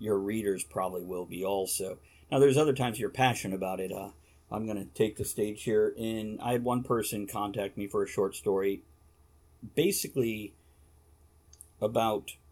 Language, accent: English, American